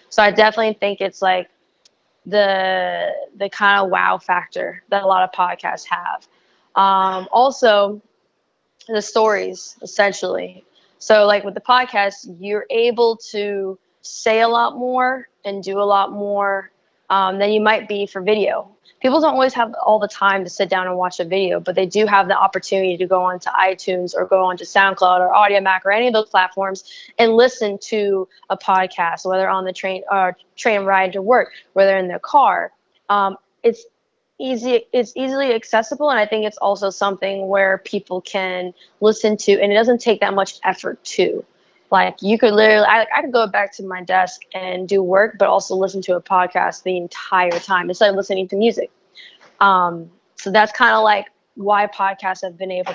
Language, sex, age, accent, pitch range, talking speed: English, female, 20-39, American, 190-215 Hz, 185 wpm